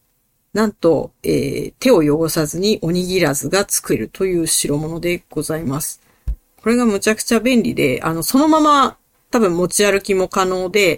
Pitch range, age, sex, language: 155-200 Hz, 40-59, female, Japanese